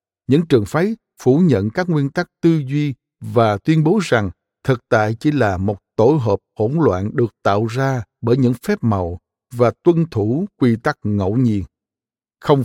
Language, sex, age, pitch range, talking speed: Vietnamese, male, 60-79, 105-150 Hz, 180 wpm